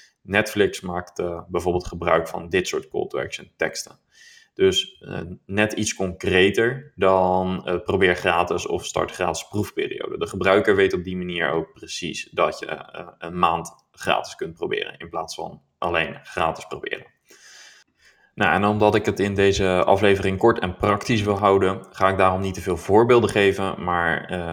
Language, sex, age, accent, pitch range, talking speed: Dutch, male, 20-39, Dutch, 90-105 Hz, 165 wpm